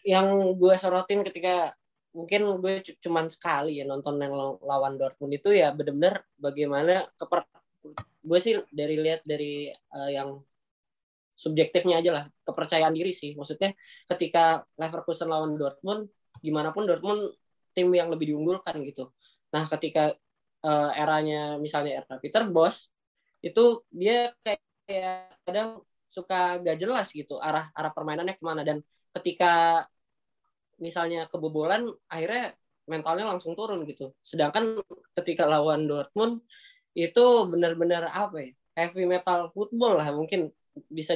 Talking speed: 125 wpm